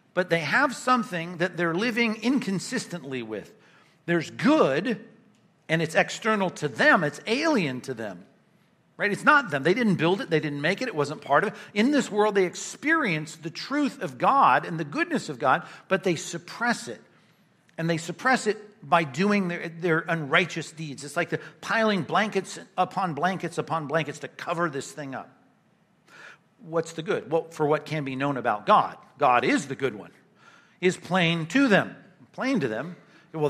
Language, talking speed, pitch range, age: English, 185 wpm, 150-205 Hz, 50-69